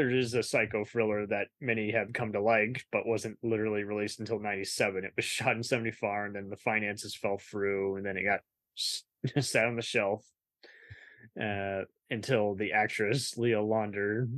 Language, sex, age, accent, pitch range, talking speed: English, male, 20-39, American, 100-115 Hz, 175 wpm